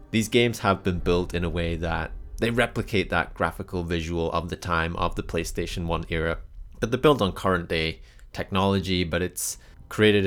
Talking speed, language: 185 wpm, English